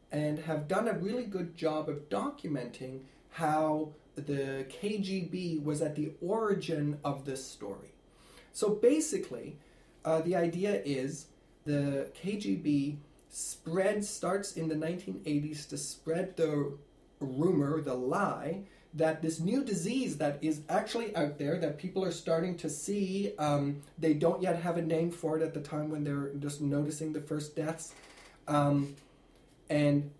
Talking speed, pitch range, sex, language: 145 wpm, 145-175 Hz, male, English